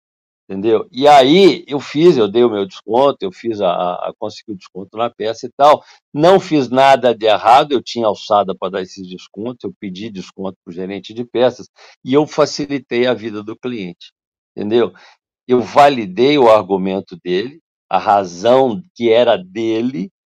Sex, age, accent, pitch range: male, 60-79, Brazilian, 105-140 Hz